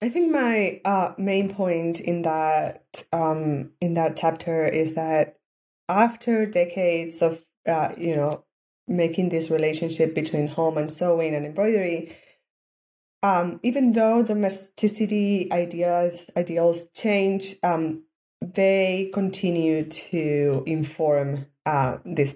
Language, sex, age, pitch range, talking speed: English, female, 20-39, 155-200 Hz, 115 wpm